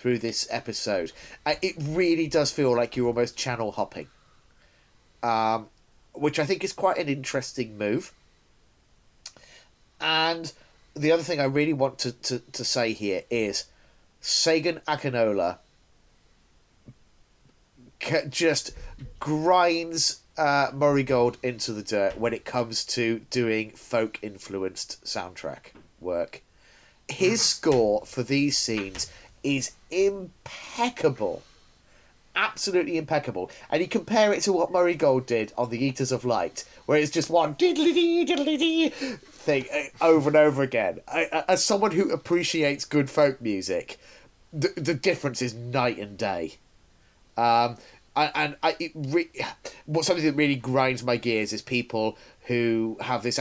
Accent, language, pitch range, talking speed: British, English, 115-165 Hz, 135 wpm